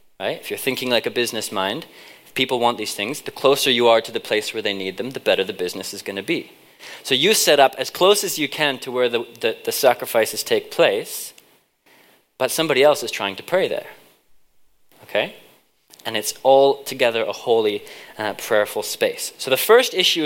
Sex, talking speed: male, 205 wpm